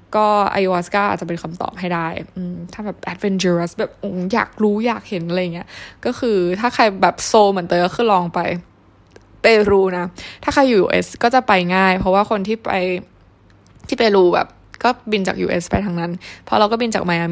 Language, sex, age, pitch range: Thai, female, 20-39, 175-205 Hz